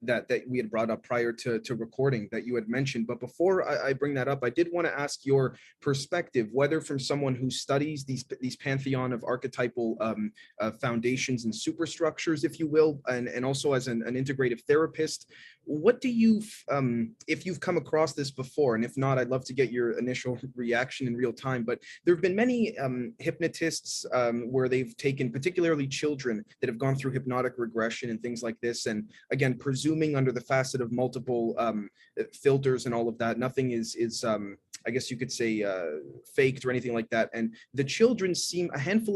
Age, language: 20-39, English